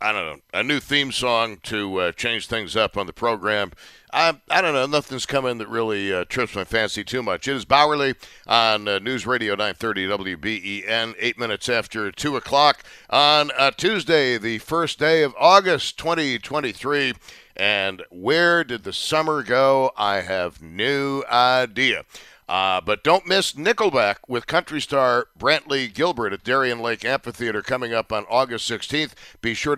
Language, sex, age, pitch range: English, male, 60-79, 110-145 Hz